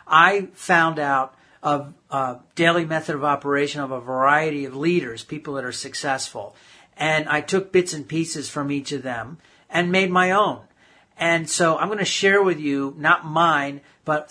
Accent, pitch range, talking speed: American, 140-170 Hz, 180 wpm